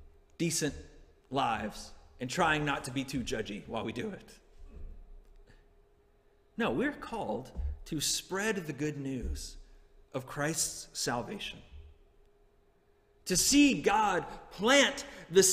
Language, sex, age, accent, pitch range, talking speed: English, male, 30-49, American, 135-210 Hz, 110 wpm